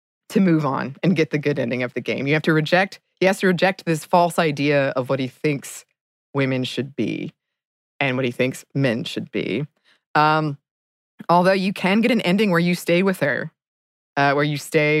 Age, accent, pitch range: 20-39, American, 140-170 Hz